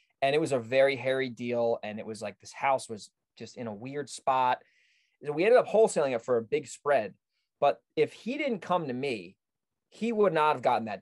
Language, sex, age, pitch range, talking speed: English, male, 20-39, 130-205 Hz, 225 wpm